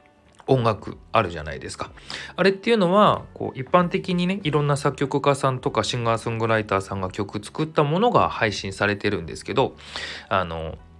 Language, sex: Japanese, male